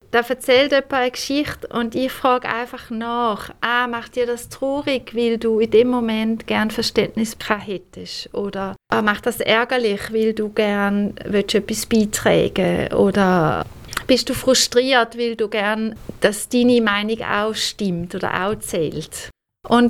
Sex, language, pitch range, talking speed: female, English, 205-245 Hz, 150 wpm